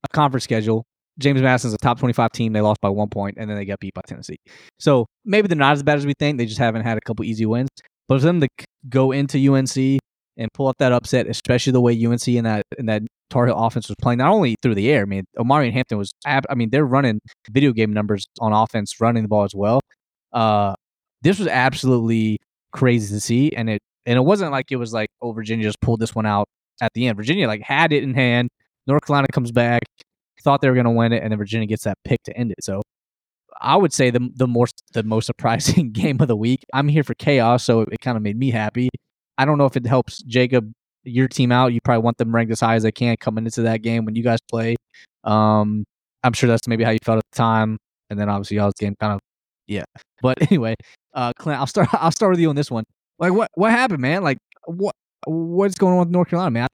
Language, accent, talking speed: English, American, 255 wpm